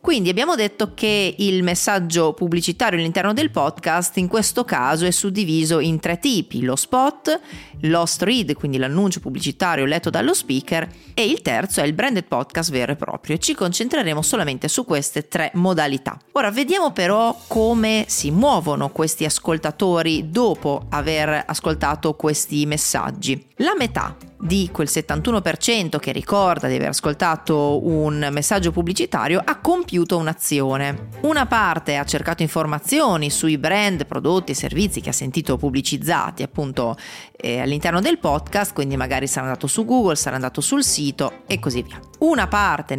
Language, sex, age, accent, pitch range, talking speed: Italian, female, 40-59, native, 150-200 Hz, 150 wpm